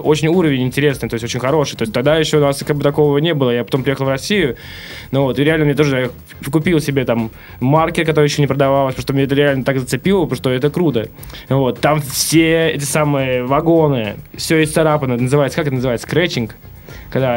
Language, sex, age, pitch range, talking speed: Russian, male, 20-39, 130-160 Hz, 220 wpm